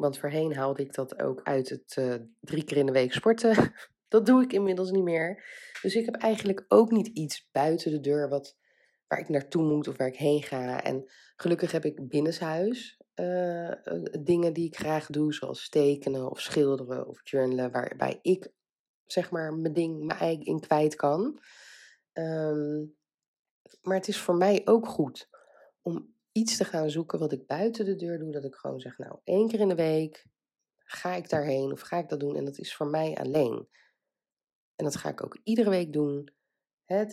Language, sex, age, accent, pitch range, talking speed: Dutch, female, 20-39, Dutch, 135-180 Hz, 195 wpm